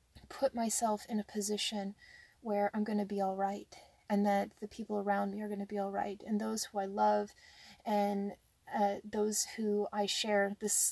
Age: 30-49